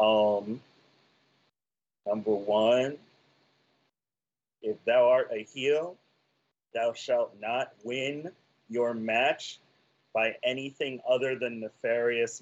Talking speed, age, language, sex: 90 wpm, 30-49, English, male